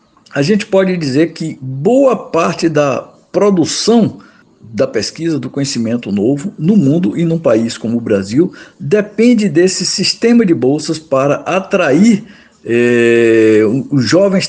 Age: 60-79